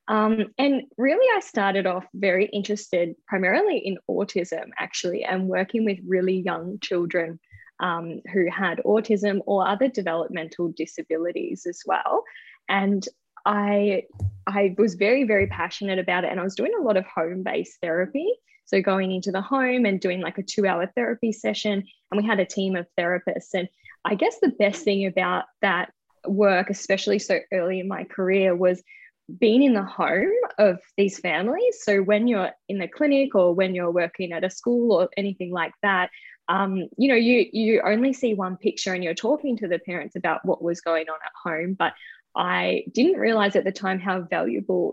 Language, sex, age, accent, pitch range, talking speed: English, female, 10-29, Australian, 180-210 Hz, 180 wpm